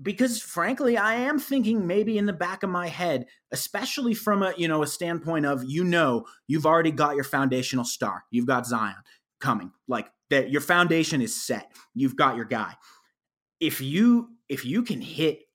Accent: American